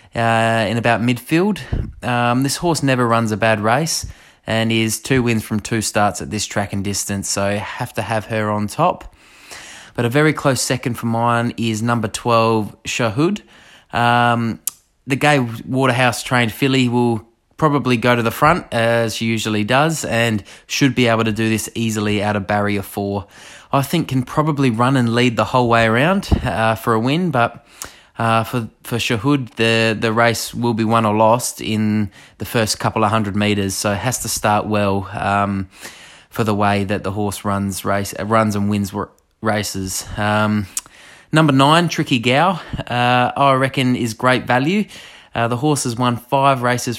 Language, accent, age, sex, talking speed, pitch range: English, Australian, 20-39, male, 185 wpm, 105-125 Hz